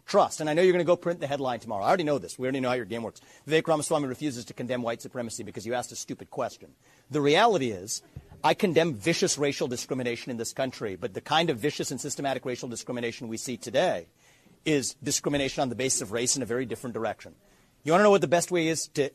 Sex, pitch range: male, 125-160 Hz